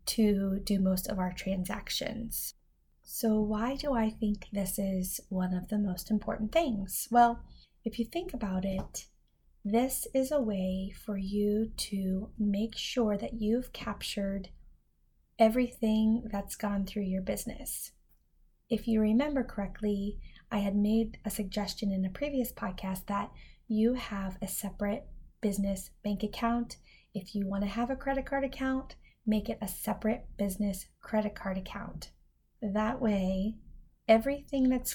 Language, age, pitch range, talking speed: English, 20-39, 195-225 Hz, 145 wpm